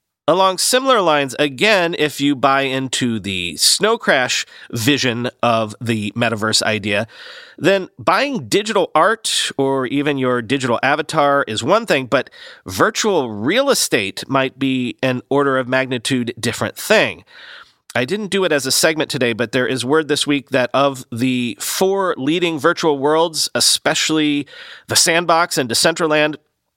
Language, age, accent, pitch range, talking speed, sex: English, 40-59, American, 125-160 Hz, 150 wpm, male